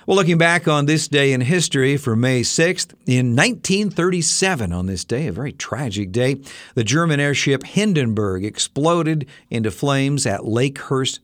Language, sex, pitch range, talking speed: English, male, 110-150 Hz, 155 wpm